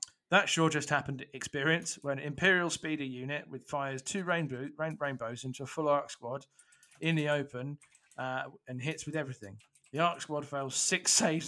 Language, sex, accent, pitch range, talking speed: English, male, British, 120-160 Hz, 180 wpm